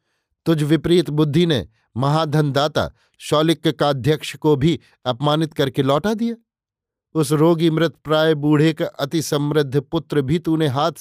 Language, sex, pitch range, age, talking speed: Hindi, male, 140-160 Hz, 50-69, 135 wpm